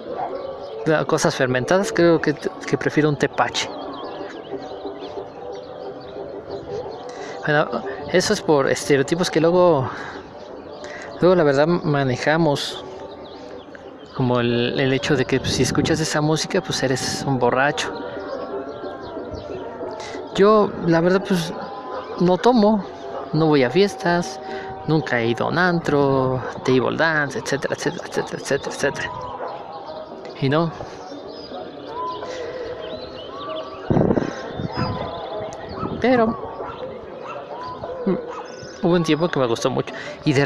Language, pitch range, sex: Spanish, 130-180 Hz, male